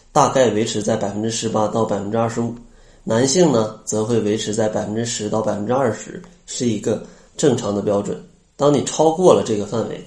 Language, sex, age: Chinese, male, 20-39